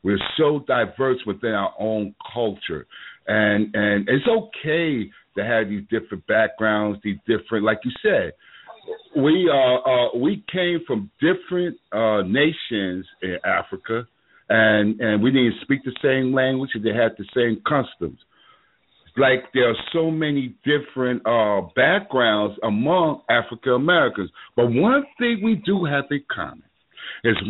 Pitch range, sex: 110-185 Hz, male